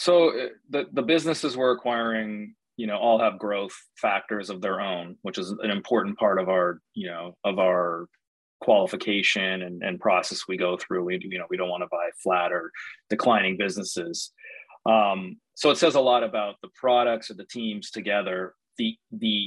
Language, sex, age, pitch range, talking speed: English, male, 30-49, 95-115 Hz, 185 wpm